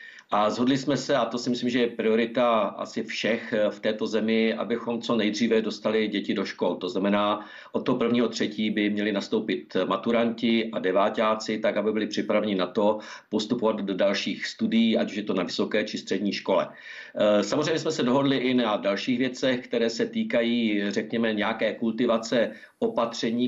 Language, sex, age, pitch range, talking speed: Czech, male, 50-69, 110-130 Hz, 175 wpm